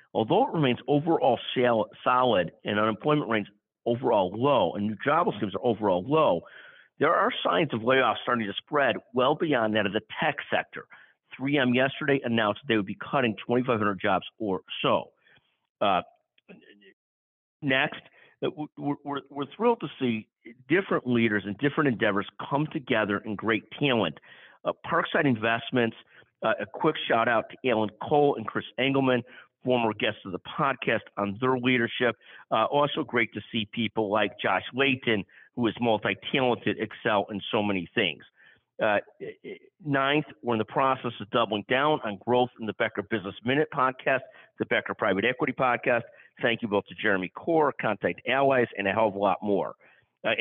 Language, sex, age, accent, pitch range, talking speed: English, male, 50-69, American, 105-140 Hz, 165 wpm